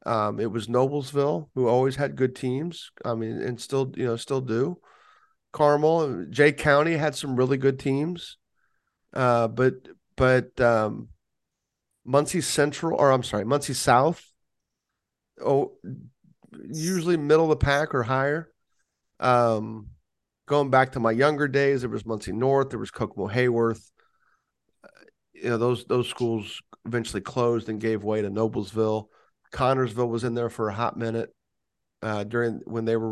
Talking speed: 155 wpm